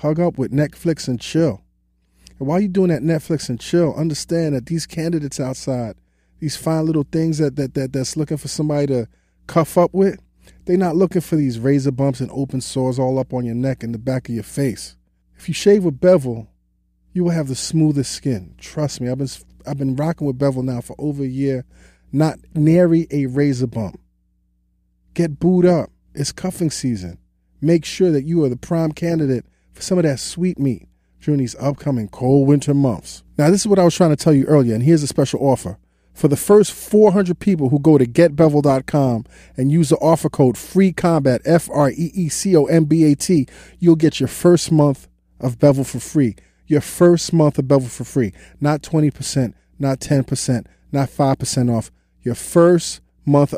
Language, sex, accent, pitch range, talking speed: English, male, American, 125-160 Hz, 190 wpm